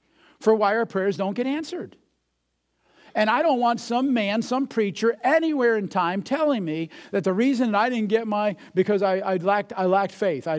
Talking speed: 205 wpm